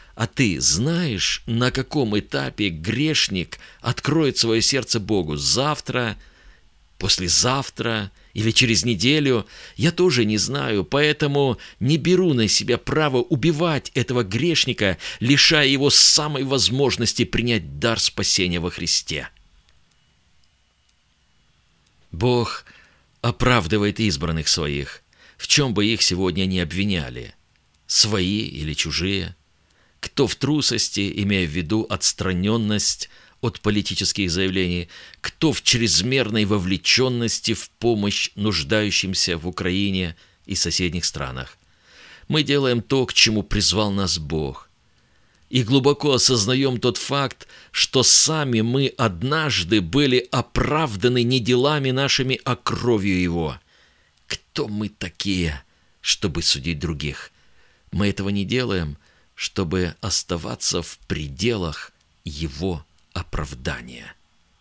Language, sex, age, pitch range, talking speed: Russian, male, 50-69, 85-125 Hz, 105 wpm